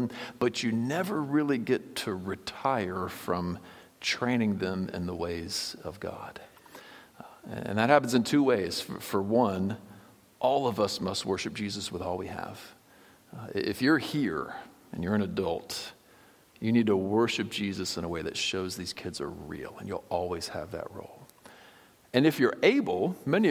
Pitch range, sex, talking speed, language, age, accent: 95-125 Hz, male, 165 wpm, English, 50-69, American